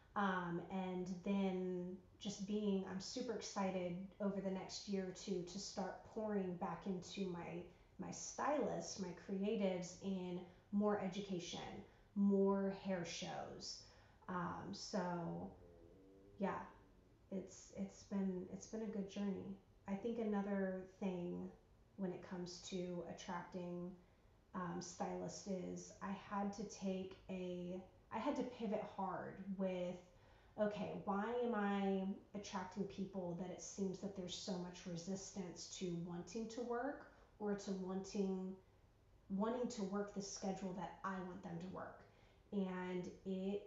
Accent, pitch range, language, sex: American, 180-205 Hz, English, female